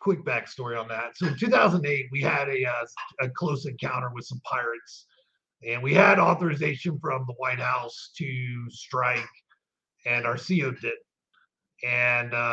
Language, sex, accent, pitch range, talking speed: English, male, American, 120-145 Hz, 155 wpm